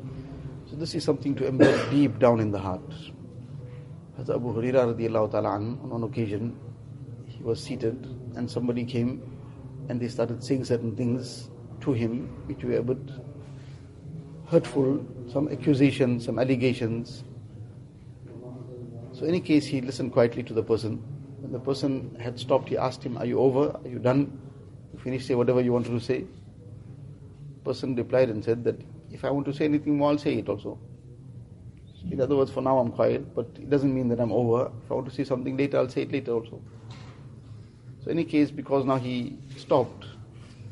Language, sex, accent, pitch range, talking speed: English, male, Indian, 120-135 Hz, 180 wpm